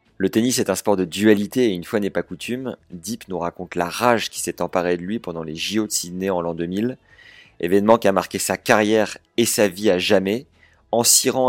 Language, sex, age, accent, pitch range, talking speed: French, male, 30-49, French, 90-110 Hz, 230 wpm